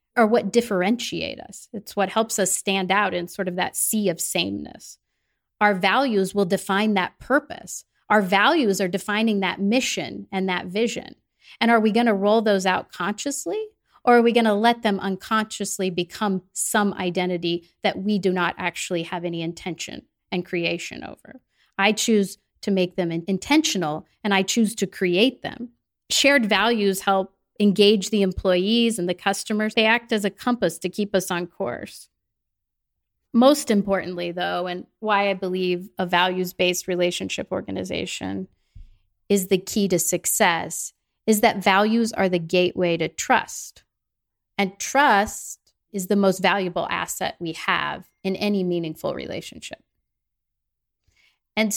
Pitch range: 180-215 Hz